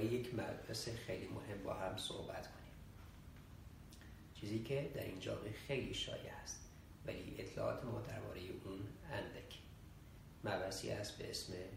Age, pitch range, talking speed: 30-49, 95-115 Hz, 125 wpm